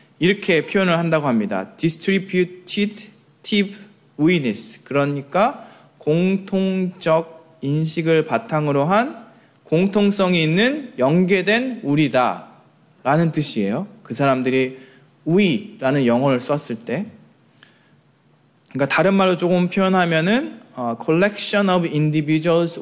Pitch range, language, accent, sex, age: 145-200 Hz, Korean, native, male, 20-39